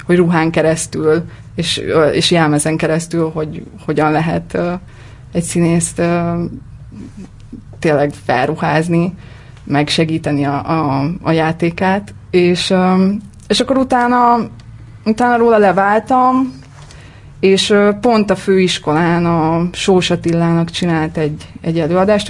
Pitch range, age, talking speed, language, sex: 155-190 Hz, 20-39, 110 wpm, Hungarian, female